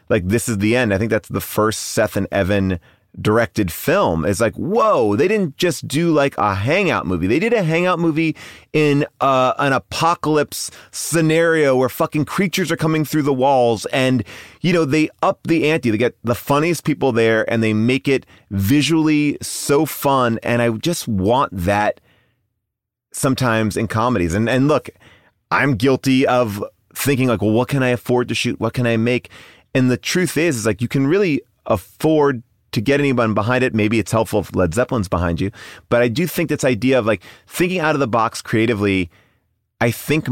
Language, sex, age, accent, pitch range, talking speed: English, male, 30-49, American, 110-140 Hz, 190 wpm